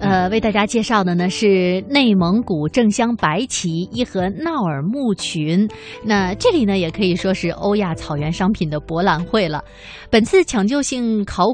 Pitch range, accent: 170-235 Hz, native